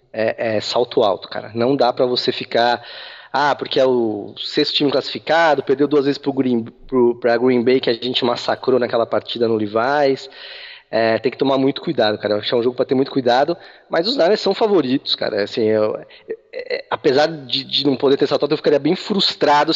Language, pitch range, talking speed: Portuguese, 120-195 Hz, 215 wpm